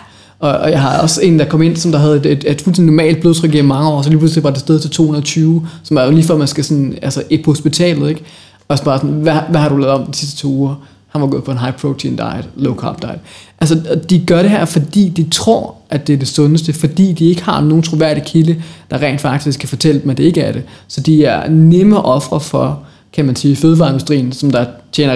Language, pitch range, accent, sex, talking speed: Danish, 140-165 Hz, native, male, 260 wpm